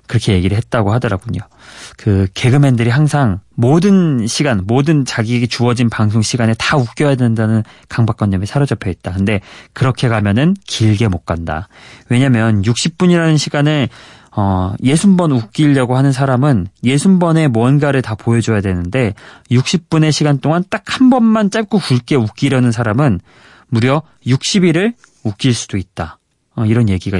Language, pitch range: Korean, 105-145 Hz